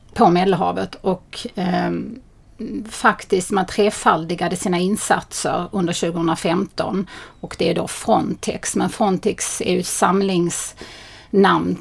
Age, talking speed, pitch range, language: 30-49, 105 wpm, 180-205 Hz, Swedish